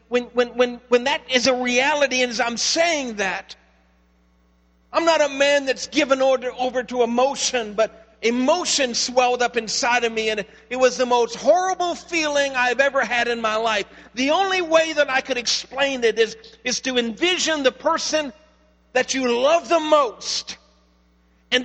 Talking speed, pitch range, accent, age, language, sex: 175 wpm, 230-300 Hz, American, 50-69, English, male